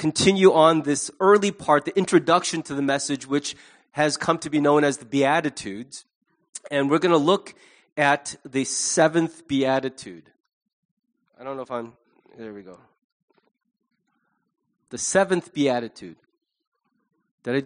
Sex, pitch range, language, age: male, 125-170 Hz, English, 30-49